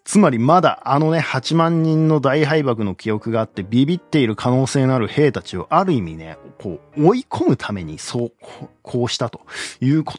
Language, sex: Japanese, male